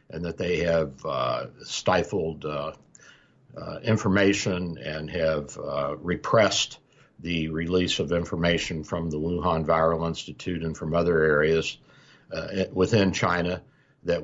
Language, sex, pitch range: English, male, 85-105 Hz